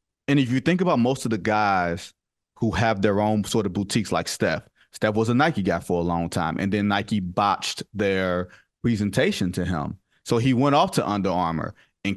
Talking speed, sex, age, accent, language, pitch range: 210 wpm, male, 30-49, American, English, 100-125 Hz